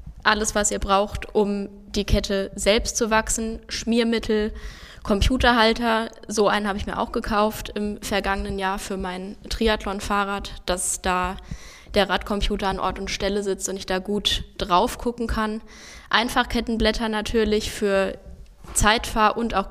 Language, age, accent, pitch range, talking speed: German, 10-29, German, 190-215 Hz, 145 wpm